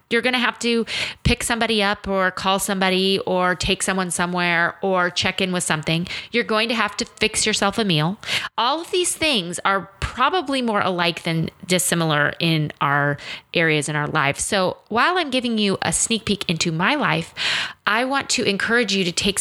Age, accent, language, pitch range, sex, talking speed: 30-49, American, English, 170-225 Hz, female, 195 wpm